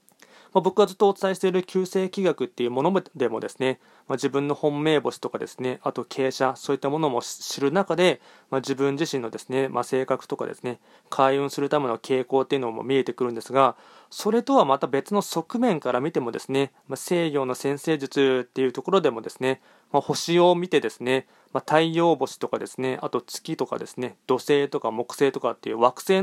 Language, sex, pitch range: Japanese, male, 125-150 Hz